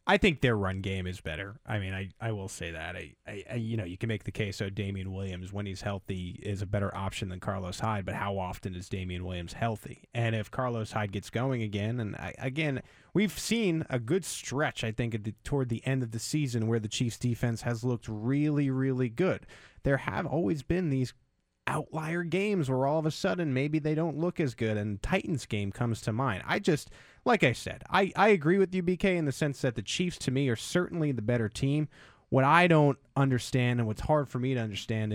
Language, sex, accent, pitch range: English, male, American, 105-140 Hz